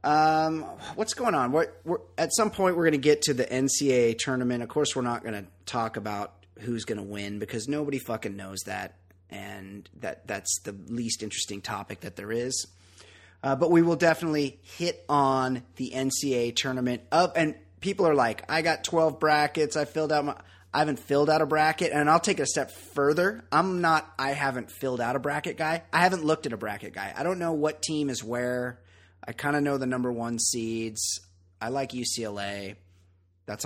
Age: 30-49